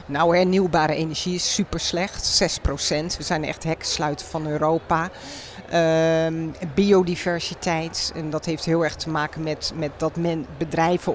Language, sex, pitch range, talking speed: Dutch, female, 160-195 Hz, 145 wpm